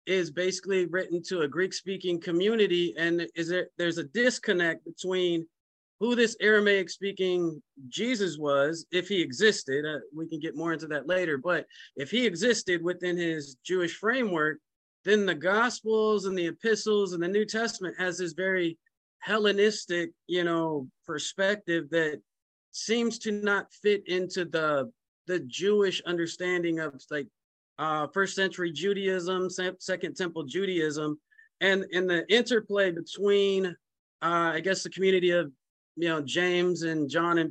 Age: 30-49